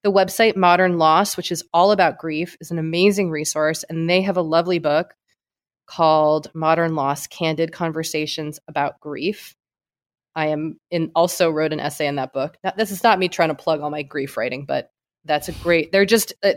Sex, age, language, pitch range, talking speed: female, 20-39, English, 155-210 Hz, 190 wpm